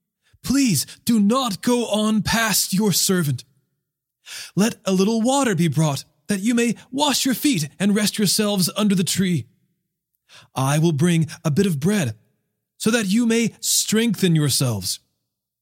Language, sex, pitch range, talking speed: English, male, 135-190 Hz, 150 wpm